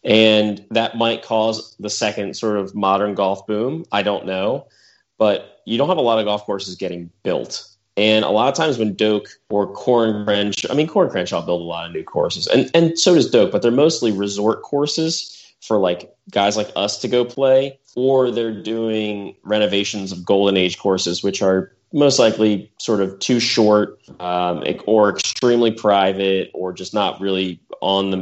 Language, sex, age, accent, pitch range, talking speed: English, male, 30-49, American, 95-115 Hz, 185 wpm